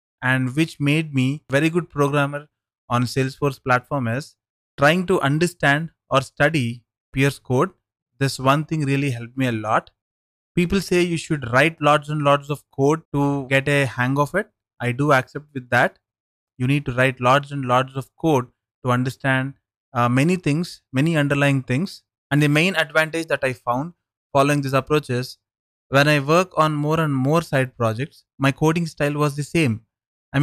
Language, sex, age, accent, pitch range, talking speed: English, male, 20-39, Indian, 130-150 Hz, 180 wpm